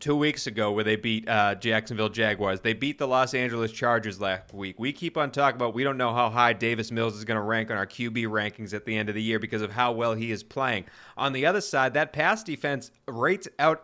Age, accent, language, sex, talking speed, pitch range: 30-49, American, English, male, 255 wpm, 115-155 Hz